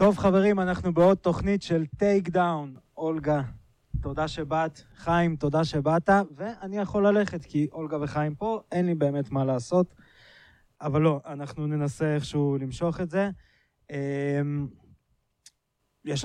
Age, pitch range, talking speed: 20-39, 125-150 Hz, 130 wpm